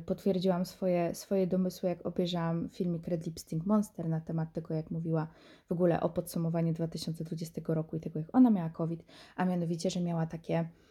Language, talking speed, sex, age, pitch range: Polish, 175 wpm, female, 20-39, 170-220 Hz